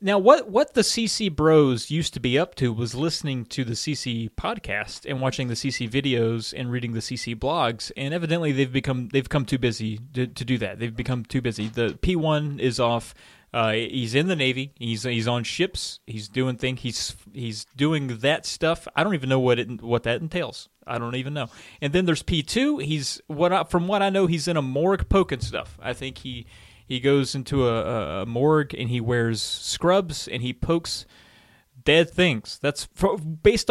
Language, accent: English, American